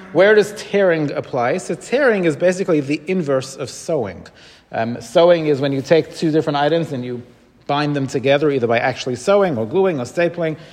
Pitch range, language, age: 140-175 Hz, English, 40-59